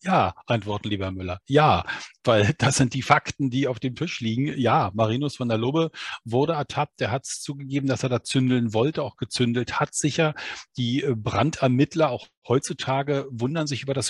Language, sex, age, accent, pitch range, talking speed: German, male, 40-59, German, 120-145 Hz, 185 wpm